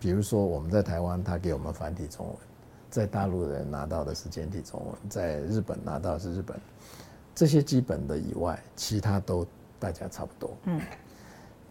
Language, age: Chinese, 60-79